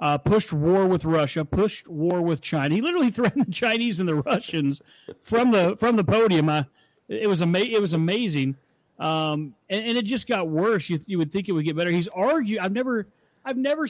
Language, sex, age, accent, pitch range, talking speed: English, male, 40-59, American, 155-195 Hz, 225 wpm